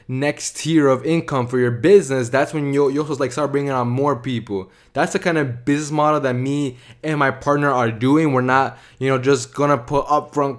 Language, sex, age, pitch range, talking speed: English, male, 20-39, 125-145 Hz, 215 wpm